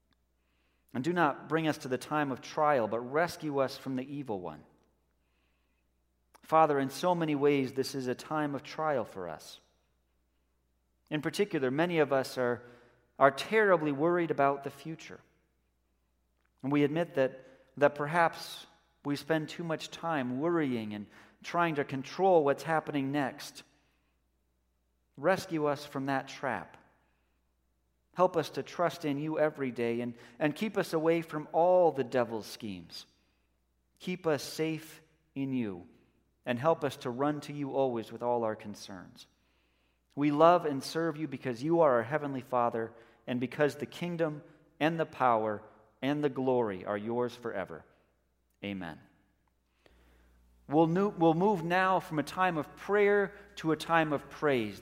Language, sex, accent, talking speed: English, male, American, 150 wpm